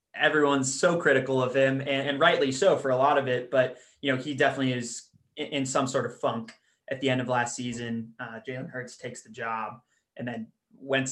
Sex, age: male, 20-39